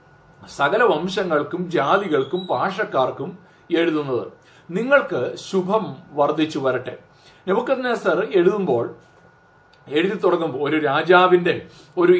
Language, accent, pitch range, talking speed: Malayalam, native, 150-195 Hz, 75 wpm